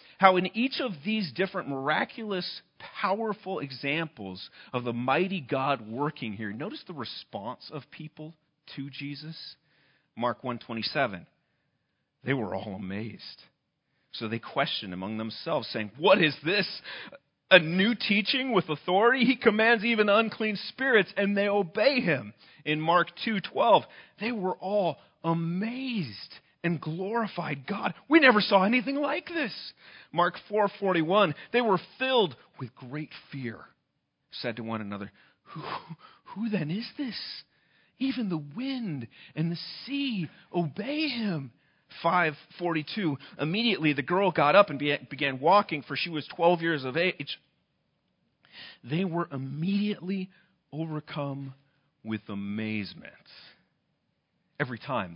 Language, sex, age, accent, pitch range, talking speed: English, male, 40-59, American, 140-205 Hz, 125 wpm